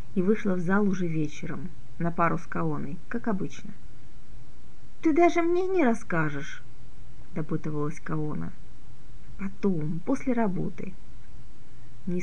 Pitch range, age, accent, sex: 165-215 Hz, 30-49, native, female